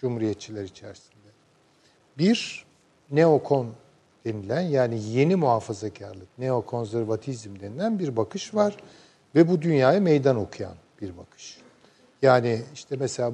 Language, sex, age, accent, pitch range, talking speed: Turkish, male, 50-69, native, 120-180 Hz, 105 wpm